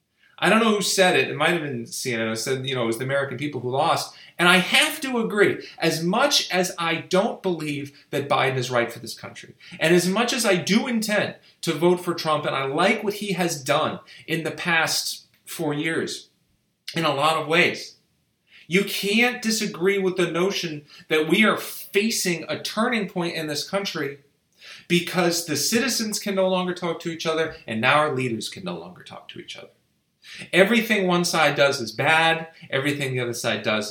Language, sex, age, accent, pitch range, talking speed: English, male, 40-59, American, 145-190 Hz, 205 wpm